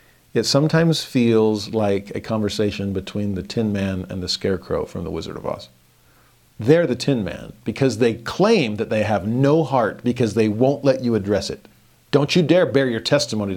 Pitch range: 100-135 Hz